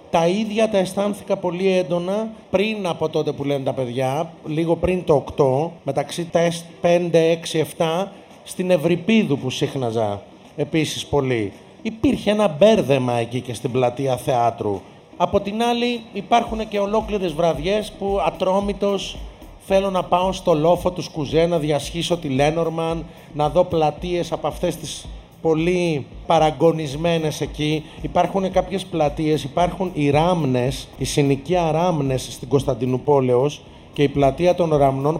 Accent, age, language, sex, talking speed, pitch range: native, 30-49, Greek, male, 140 wpm, 145-190 Hz